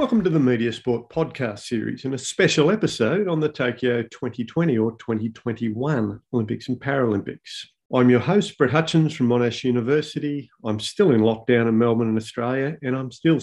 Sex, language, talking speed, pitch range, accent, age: male, English, 175 wpm, 110-150 Hz, Australian, 50-69